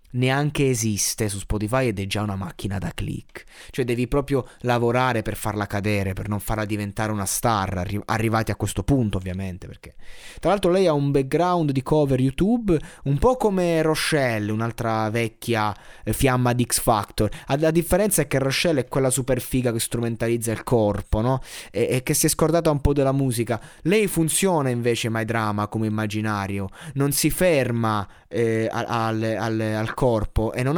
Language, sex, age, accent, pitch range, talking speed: Italian, male, 20-39, native, 110-145 Hz, 180 wpm